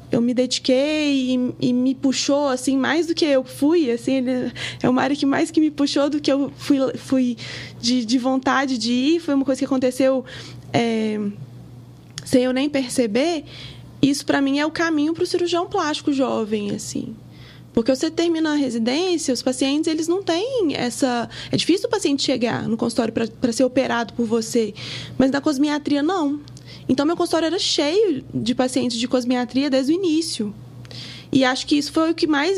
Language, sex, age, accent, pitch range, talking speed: Portuguese, female, 20-39, Brazilian, 255-310 Hz, 190 wpm